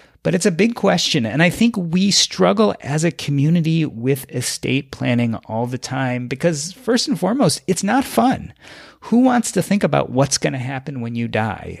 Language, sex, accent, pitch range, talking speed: English, male, American, 125-170 Hz, 195 wpm